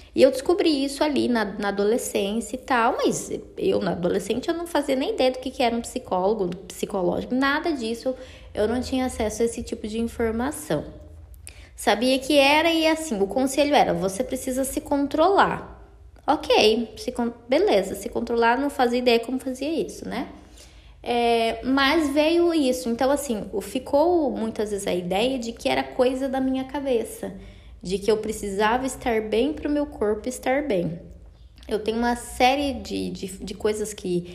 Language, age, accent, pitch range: Portuguese, 20-39, Brazilian, 200-270 Hz